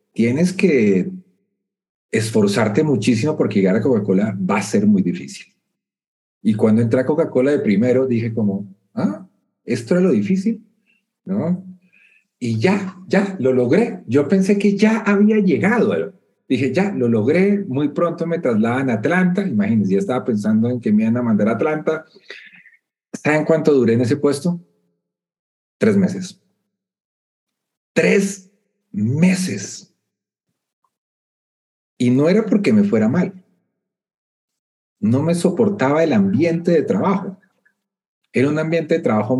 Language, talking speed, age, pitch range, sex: Spanish, 135 wpm, 40-59, 125-195 Hz, male